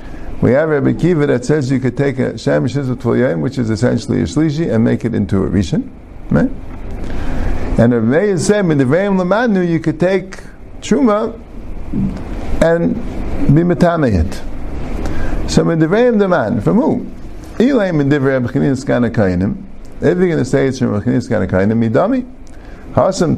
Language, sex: English, male